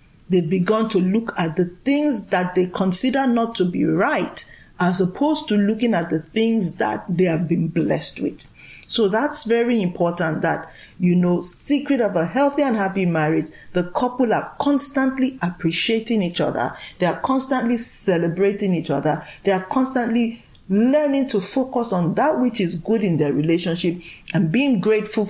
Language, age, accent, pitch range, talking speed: English, 40-59, Nigerian, 175-235 Hz, 170 wpm